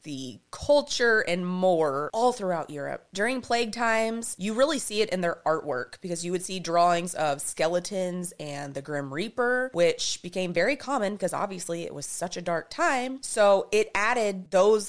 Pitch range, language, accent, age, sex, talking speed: 170-220 Hz, English, American, 20-39, female, 175 wpm